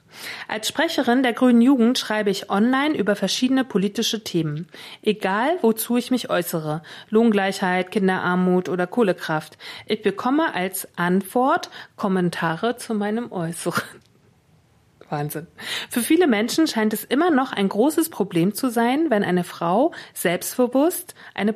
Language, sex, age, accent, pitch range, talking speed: German, female, 40-59, German, 185-260 Hz, 130 wpm